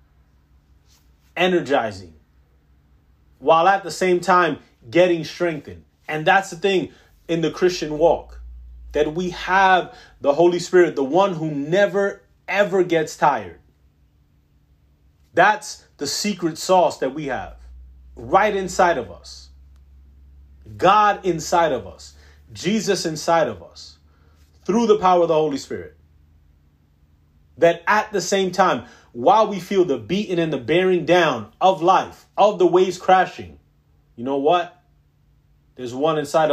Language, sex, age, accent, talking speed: English, male, 30-49, American, 135 wpm